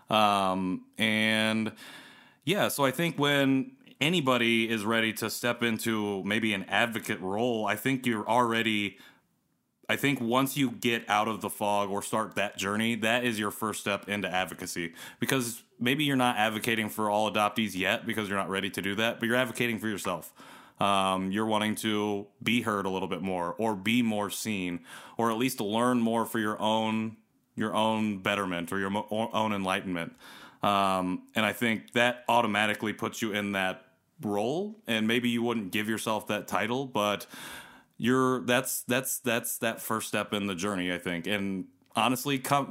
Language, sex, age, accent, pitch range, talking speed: English, male, 30-49, American, 100-115 Hz, 180 wpm